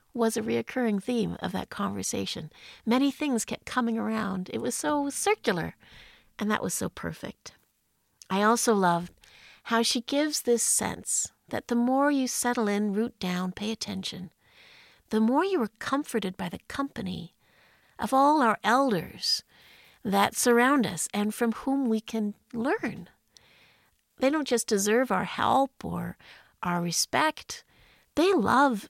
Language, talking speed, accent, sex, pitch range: English, 145 wpm, American, female, 200-270 Hz